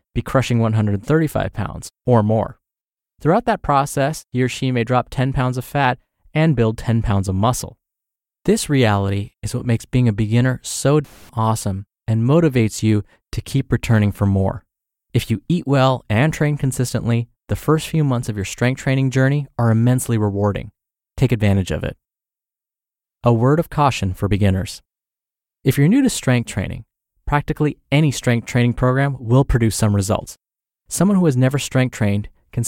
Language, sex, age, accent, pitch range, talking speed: English, male, 20-39, American, 110-135 Hz, 170 wpm